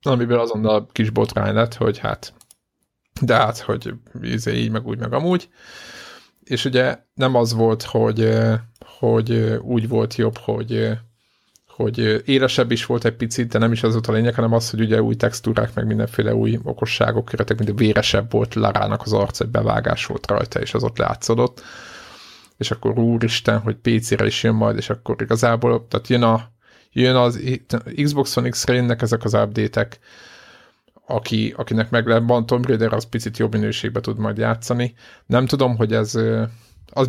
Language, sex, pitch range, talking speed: Hungarian, male, 110-120 Hz, 170 wpm